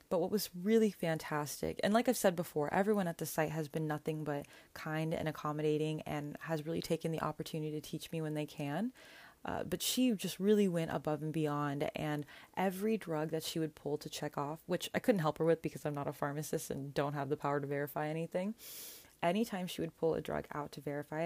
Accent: American